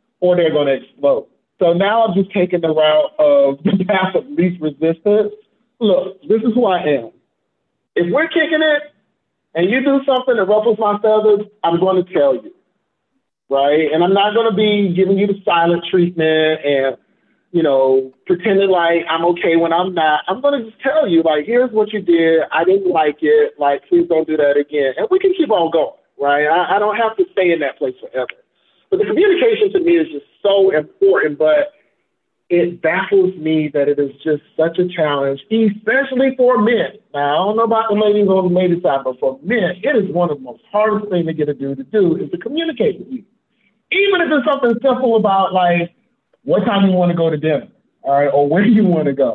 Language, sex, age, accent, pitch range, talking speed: English, male, 40-59, American, 160-235 Hz, 220 wpm